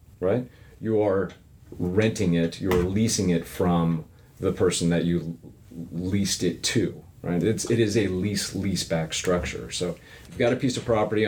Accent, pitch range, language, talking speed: American, 90-115 Hz, English, 170 wpm